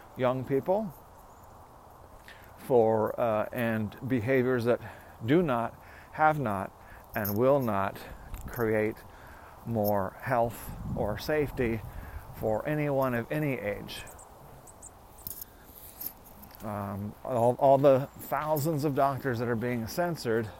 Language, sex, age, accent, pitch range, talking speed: English, male, 40-59, American, 105-135 Hz, 100 wpm